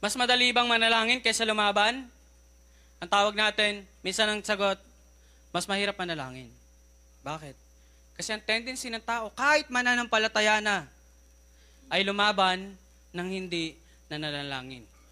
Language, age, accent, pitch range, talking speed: Filipino, 20-39, native, 120-200 Hz, 115 wpm